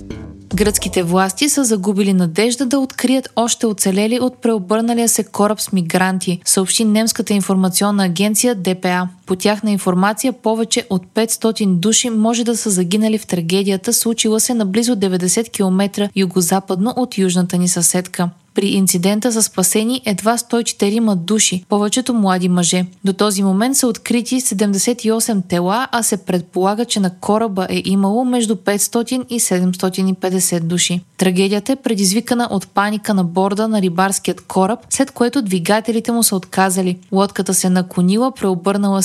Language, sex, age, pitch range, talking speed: Bulgarian, female, 20-39, 185-230 Hz, 145 wpm